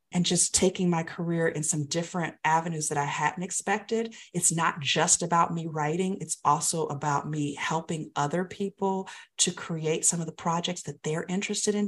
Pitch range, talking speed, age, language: 155-195 Hz, 180 wpm, 40-59, English